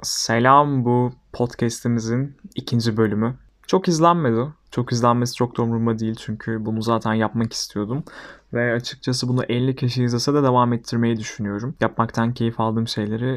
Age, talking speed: 20-39, 140 wpm